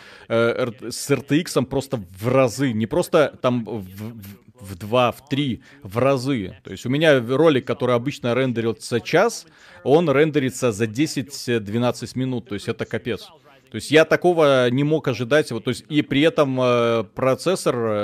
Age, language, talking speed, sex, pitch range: 30-49, Russian, 160 wpm, male, 115-140 Hz